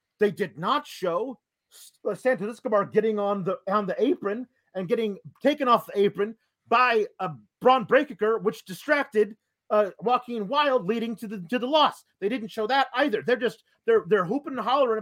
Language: English